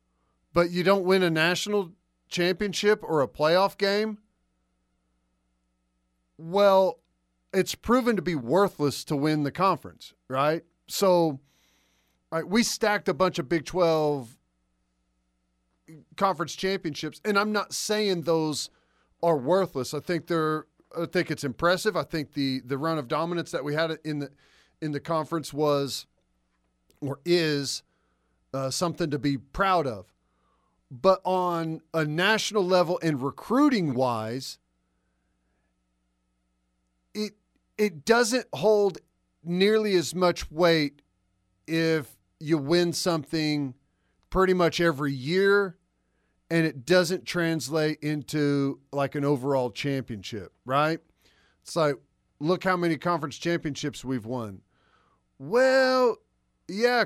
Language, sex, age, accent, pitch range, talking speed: English, male, 40-59, American, 125-180 Hz, 120 wpm